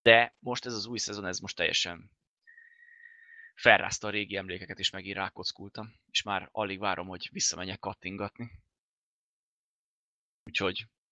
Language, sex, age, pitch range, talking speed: Hungarian, male, 20-39, 95-120 Hz, 130 wpm